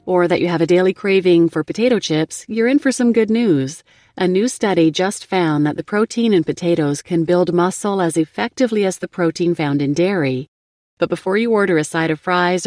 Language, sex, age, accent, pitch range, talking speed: English, female, 30-49, American, 155-200 Hz, 215 wpm